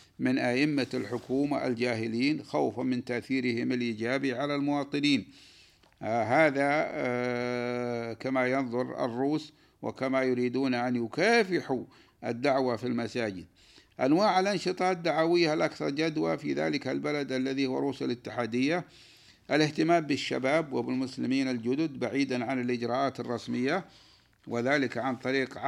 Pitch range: 120-145 Hz